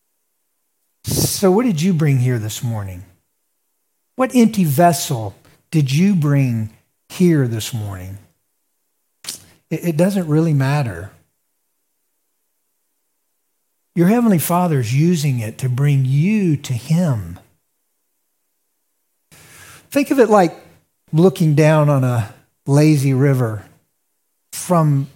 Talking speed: 100 wpm